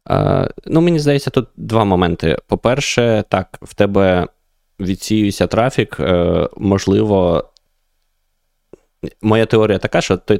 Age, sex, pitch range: 20-39, male, 85-105 Hz